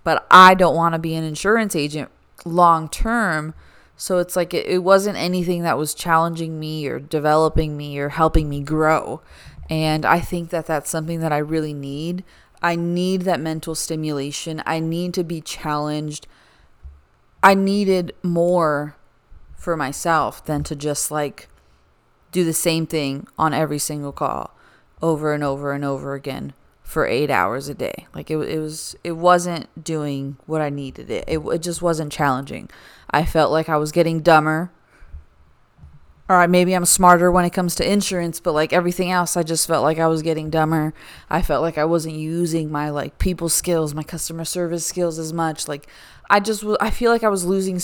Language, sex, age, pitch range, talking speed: English, female, 20-39, 150-175 Hz, 180 wpm